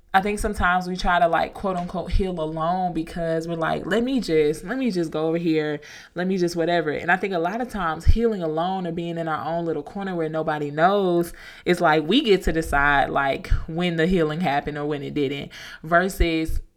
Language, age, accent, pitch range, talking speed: English, 20-39, American, 165-225 Hz, 220 wpm